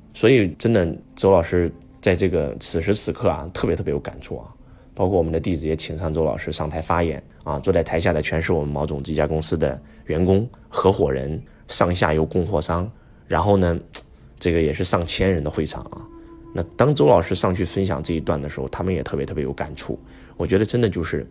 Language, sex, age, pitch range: Chinese, male, 20-39, 80-105 Hz